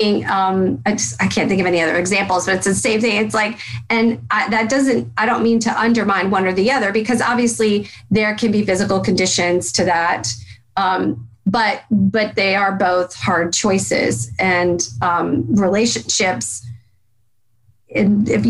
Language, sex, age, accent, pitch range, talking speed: English, female, 30-49, American, 170-215 Hz, 170 wpm